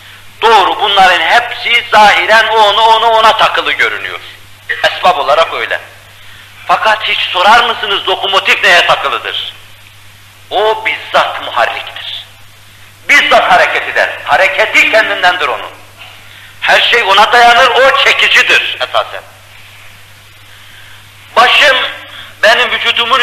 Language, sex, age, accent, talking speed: Turkish, male, 50-69, native, 100 wpm